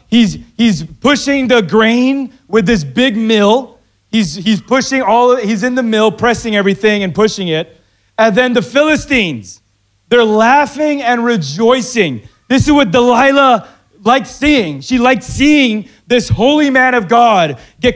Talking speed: 155 wpm